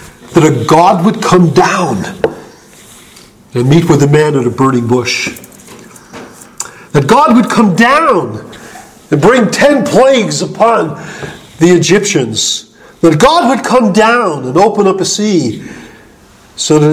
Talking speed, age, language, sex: 140 wpm, 50-69, English, male